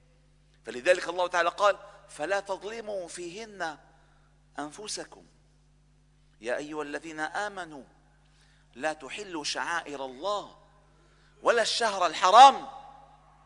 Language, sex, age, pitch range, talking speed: Arabic, male, 50-69, 155-250 Hz, 85 wpm